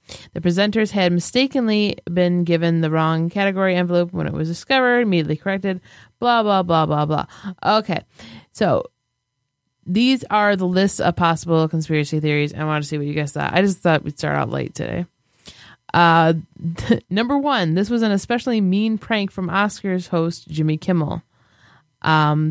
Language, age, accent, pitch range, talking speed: English, 20-39, American, 155-195 Hz, 165 wpm